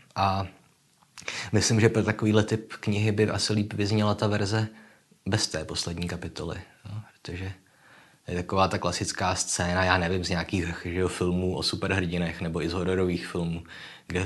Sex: male